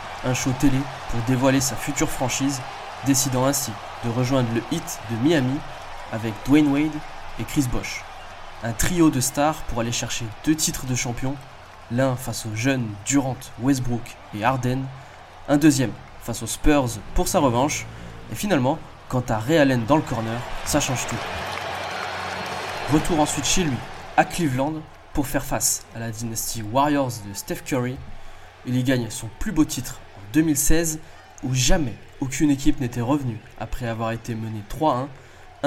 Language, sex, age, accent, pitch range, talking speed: French, male, 20-39, French, 115-145 Hz, 160 wpm